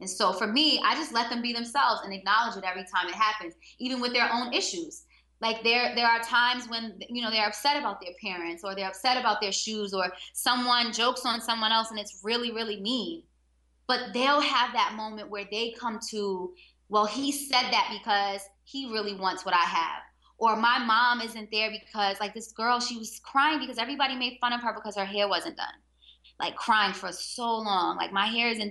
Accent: American